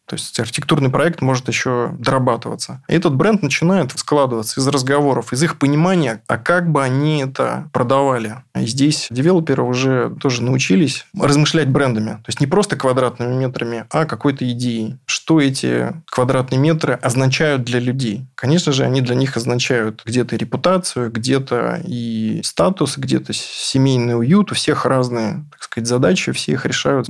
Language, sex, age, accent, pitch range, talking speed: Russian, male, 20-39, native, 120-145 Hz, 155 wpm